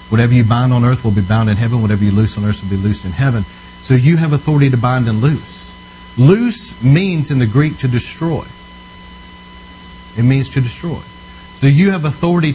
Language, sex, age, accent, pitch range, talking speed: English, male, 40-59, American, 100-130 Hz, 205 wpm